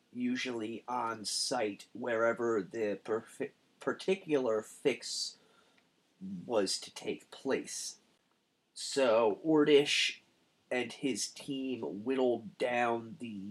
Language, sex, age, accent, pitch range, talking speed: English, male, 30-49, American, 115-150 Hz, 90 wpm